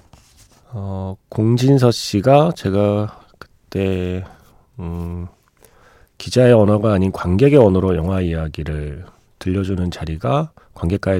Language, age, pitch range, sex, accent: Korean, 40-59, 85-125 Hz, male, native